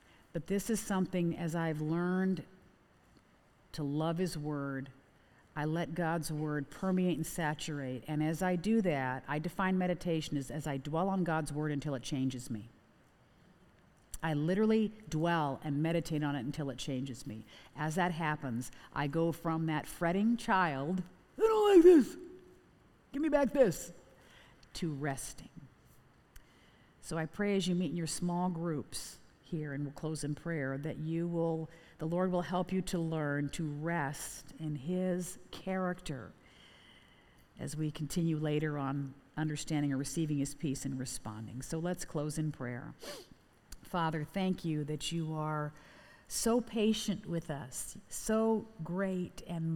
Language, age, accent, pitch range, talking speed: English, 50-69, American, 145-180 Hz, 155 wpm